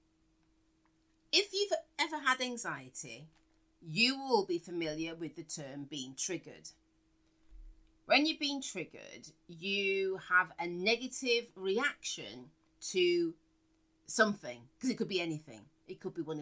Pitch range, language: 160-245 Hz, English